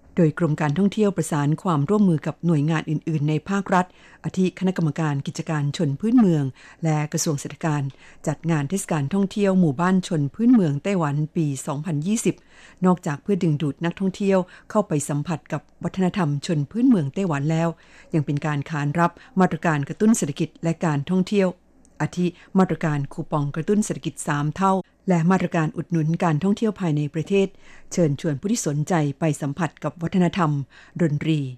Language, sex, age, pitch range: Thai, female, 60-79, 150-185 Hz